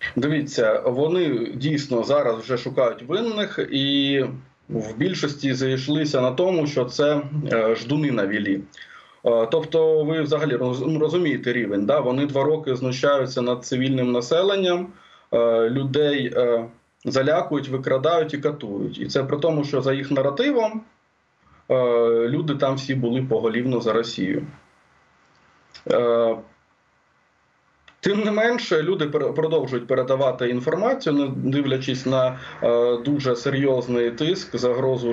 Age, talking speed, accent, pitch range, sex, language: 20-39, 110 wpm, native, 120-150 Hz, male, Ukrainian